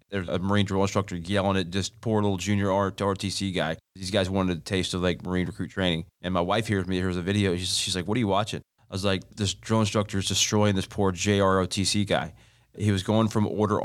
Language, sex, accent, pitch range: English, male, American, 90-105 Hz